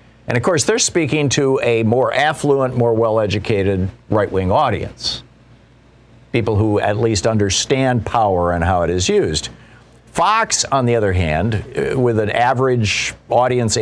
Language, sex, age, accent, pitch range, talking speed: English, male, 50-69, American, 100-125 Hz, 145 wpm